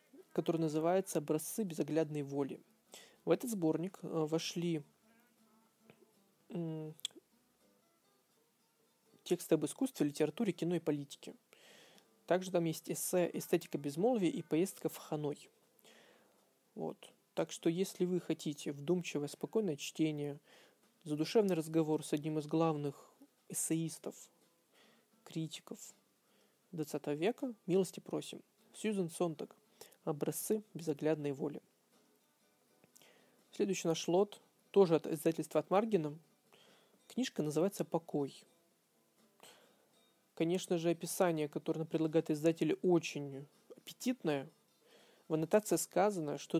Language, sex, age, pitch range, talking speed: Russian, male, 20-39, 155-190 Hz, 95 wpm